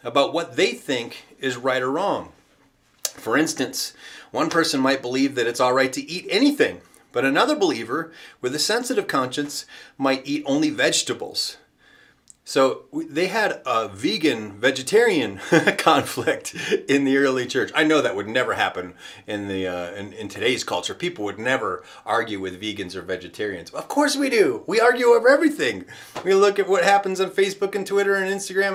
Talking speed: 170 wpm